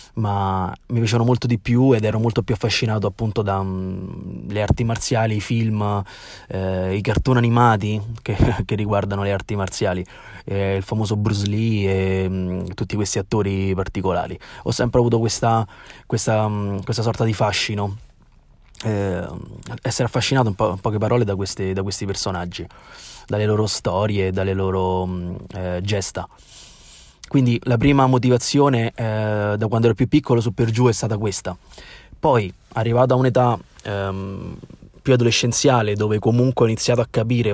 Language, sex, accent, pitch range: Italian, male, native, 100-120 Hz